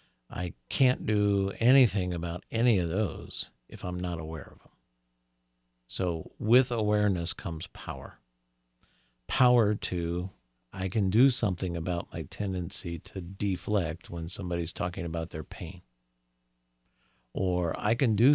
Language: English